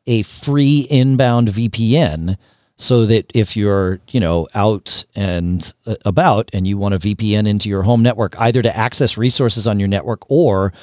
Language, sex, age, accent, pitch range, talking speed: English, male, 40-59, American, 95-130 Hz, 165 wpm